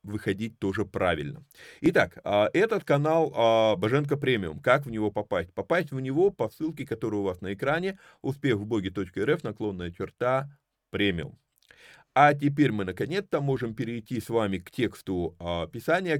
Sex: male